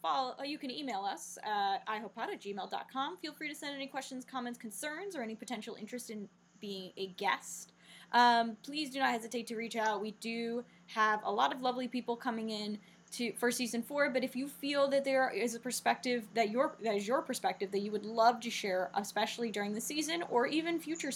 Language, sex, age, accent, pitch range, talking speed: English, female, 10-29, American, 210-270 Hz, 215 wpm